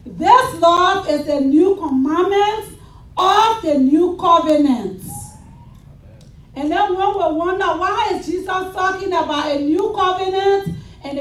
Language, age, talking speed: English, 40-59, 130 wpm